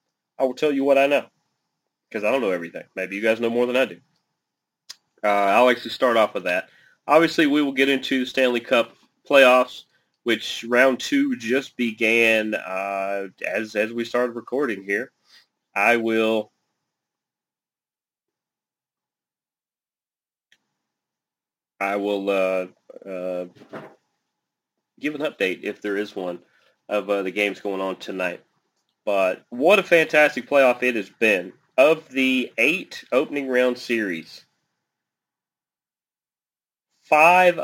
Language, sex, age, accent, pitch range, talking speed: English, male, 30-49, American, 105-140 Hz, 130 wpm